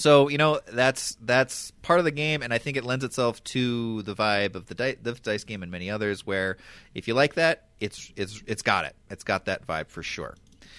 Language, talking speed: English, 230 wpm